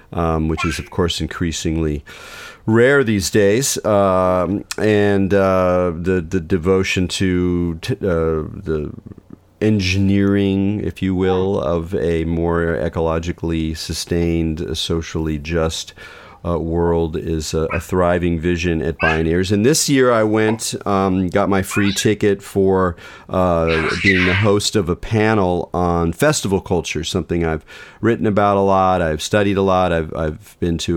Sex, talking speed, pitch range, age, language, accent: male, 145 wpm, 80-95 Hz, 40-59, English, American